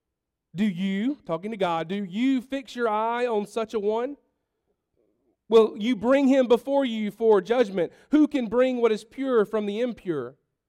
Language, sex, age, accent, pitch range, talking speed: English, male, 40-59, American, 175-250 Hz, 175 wpm